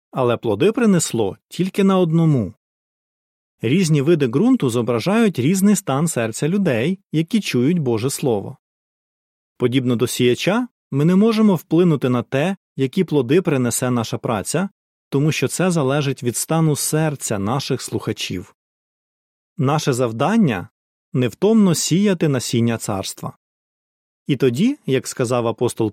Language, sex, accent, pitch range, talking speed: Ukrainian, male, native, 120-185 Hz, 125 wpm